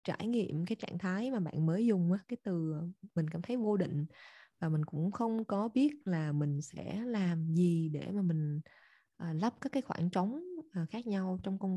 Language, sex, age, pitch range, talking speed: Vietnamese, female, 20-39, 170-215 Hz, 200 wpm